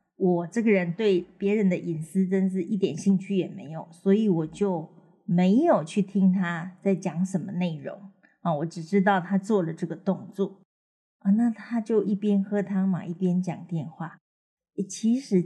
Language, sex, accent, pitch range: Chinese, female, native, 180-220 Hz